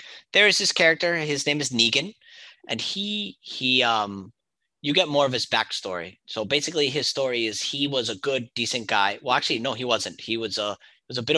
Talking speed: 210 wpm